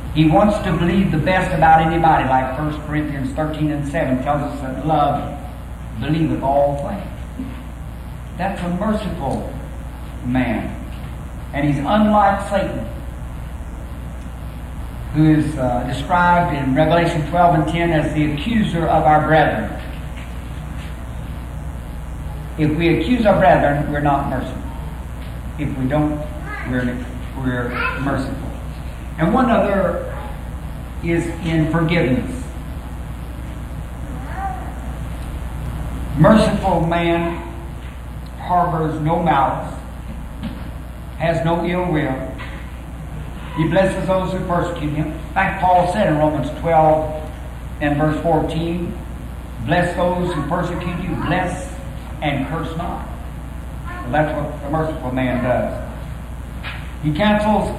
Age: 60-79